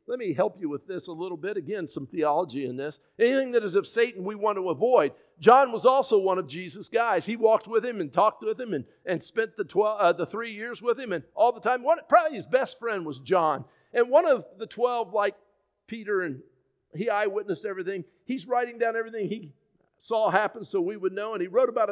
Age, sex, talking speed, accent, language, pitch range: 50-69, male, 230 wpm, American, English, 190-245 Hz